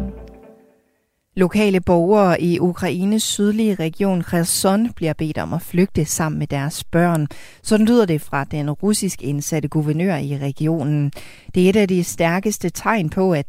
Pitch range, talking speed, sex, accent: 150-195 Hz, 155 wpm, female, native